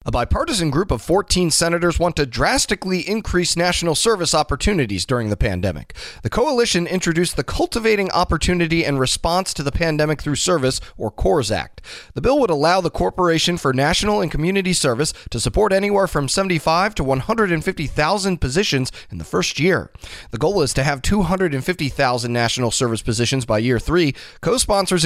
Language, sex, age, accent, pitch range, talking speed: English, male, 30-49, American, 125-180 Hz, 165 wpm